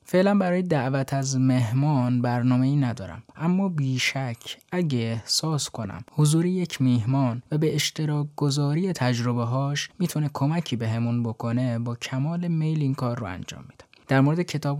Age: 20-39